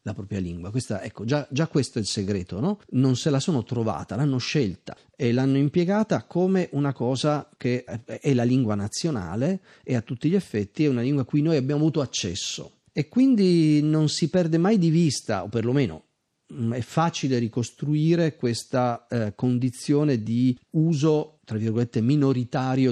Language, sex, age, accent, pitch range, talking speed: Italian, male, 40-59, native, 110-150 Hz, 170 wpm